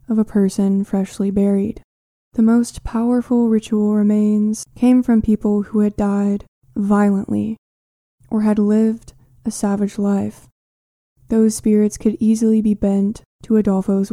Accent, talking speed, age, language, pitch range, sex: American, 130 wpm, 20-39, English, 200-220 Hz, female